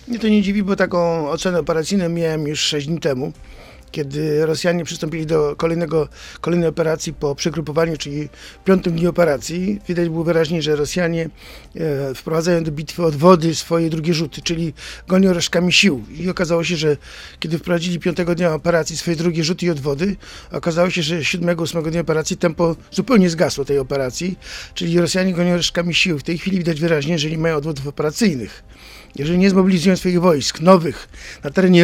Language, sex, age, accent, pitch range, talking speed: Polish, male, 50-69, native, 155-180 Hz, 170 wpm